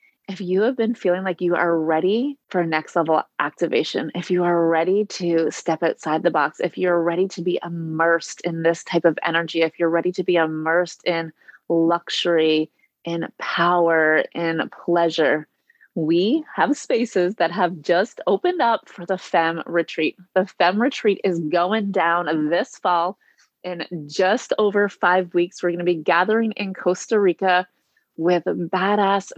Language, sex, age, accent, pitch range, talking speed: English, female, 30-49, American, 165-190 Hz, 165 wpm